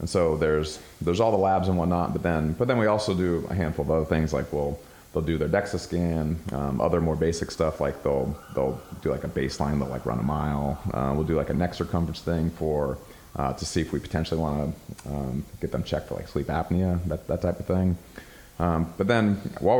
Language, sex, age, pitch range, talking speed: English, male, 30-49, 75-90 Hz, 240 wpm